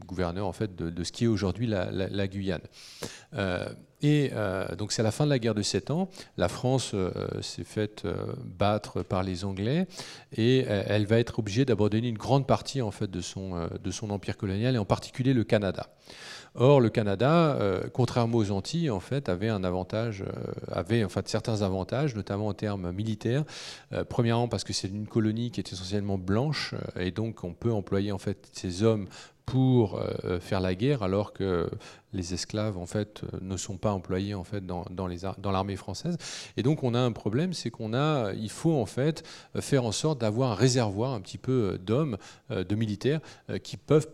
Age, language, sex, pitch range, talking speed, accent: 40-59, French, male, 100-130 Hz, 210 wpm, French